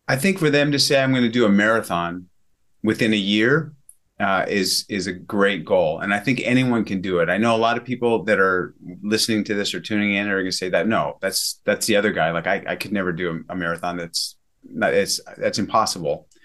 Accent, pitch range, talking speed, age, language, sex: American, 95-120 Hz, 245 wpm, 30-49, English, male